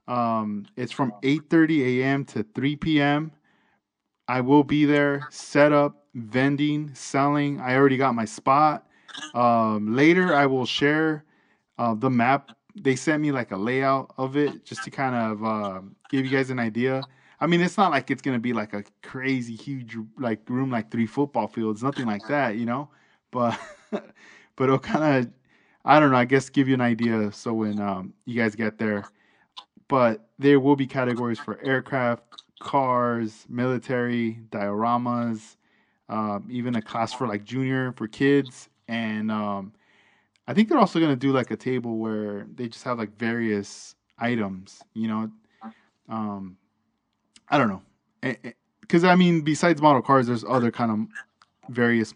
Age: 20-39